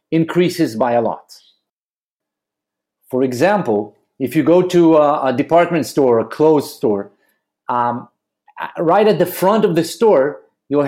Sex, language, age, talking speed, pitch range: male, Hebrew, 50-69, 145 wpm, 135-180 Hz